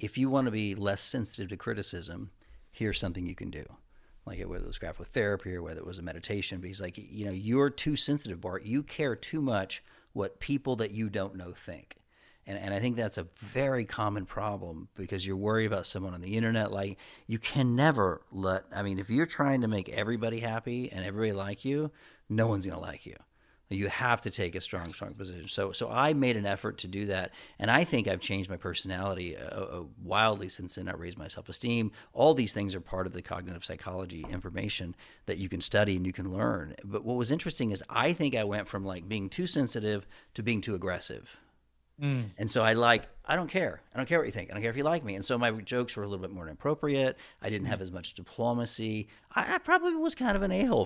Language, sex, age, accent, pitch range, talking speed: English, male, 40-59, American, 95-125 Hz, 235 wpm